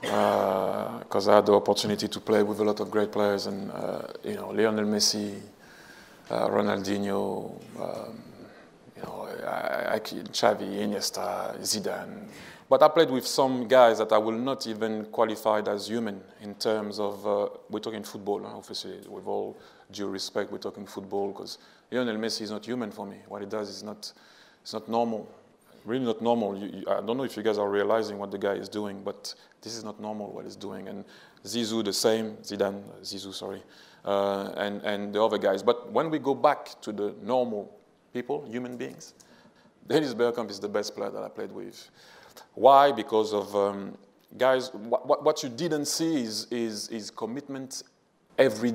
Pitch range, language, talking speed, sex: 100-120 Hz, English, 180 wpm, male